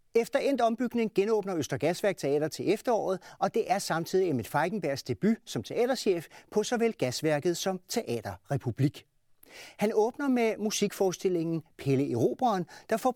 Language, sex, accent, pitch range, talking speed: Danish, male, native, 125-200 Hz, 140 wpm